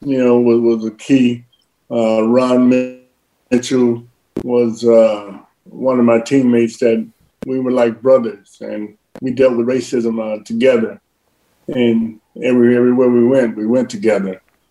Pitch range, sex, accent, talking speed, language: 110-125 Hz, male, American, 140 wpm, English